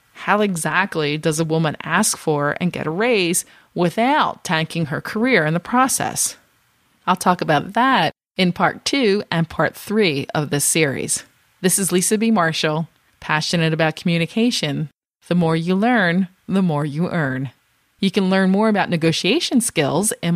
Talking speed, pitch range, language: 160 wpm, 155-185 Hz, English